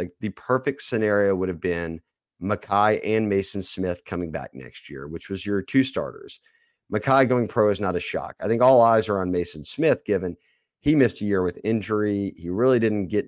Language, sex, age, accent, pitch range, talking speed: English, male, 30-49, American, 90-110 Hz, 210 wpm